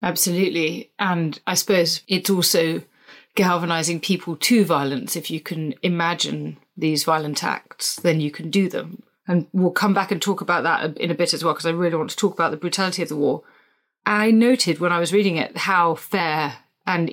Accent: British